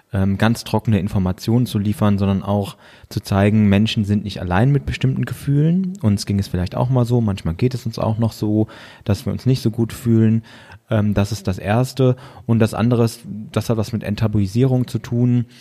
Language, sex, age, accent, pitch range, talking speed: German, male, 20-39, German, 100-115 Hz, 200 wpm